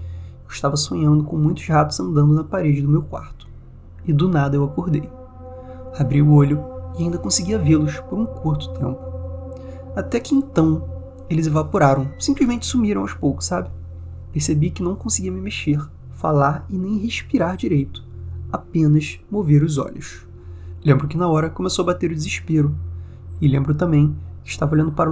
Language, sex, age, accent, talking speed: Portuguese, male, 20-39, Brazilian, 160 wpm